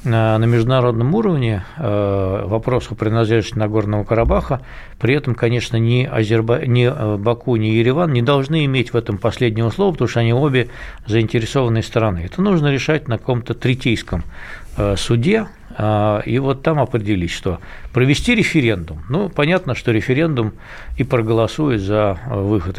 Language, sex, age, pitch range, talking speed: Russian, male, 60-79, 100-125 Hz, 135 wpm